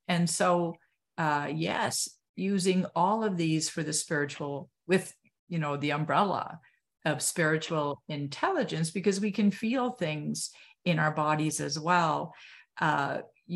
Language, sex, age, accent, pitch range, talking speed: English, female, 50-69, American, 150-200 Hz, 135 wpm